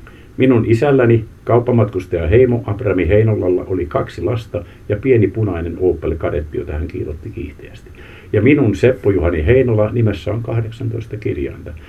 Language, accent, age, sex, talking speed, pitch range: Finnish, native, 50-69, male, 130 wpm, 90-115 Hz